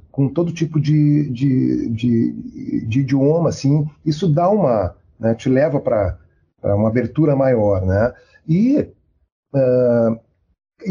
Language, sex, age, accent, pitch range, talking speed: Portuguese, male, 40-59, Brazilian, 115-150 Hz, 120 wpm